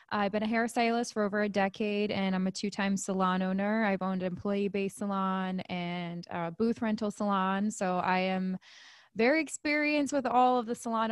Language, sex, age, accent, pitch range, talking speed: English, female, 10-29, American, 185-210 Hz, 185 wpm